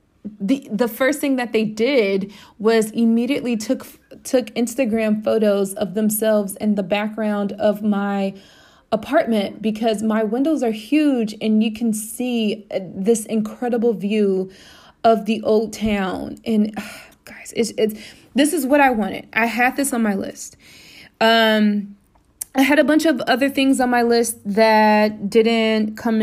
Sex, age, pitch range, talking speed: female, 20-39, 205-235 Hz, 155 wpm